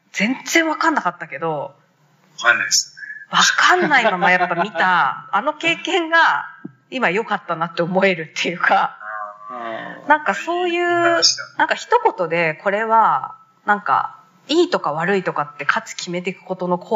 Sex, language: female, Japanese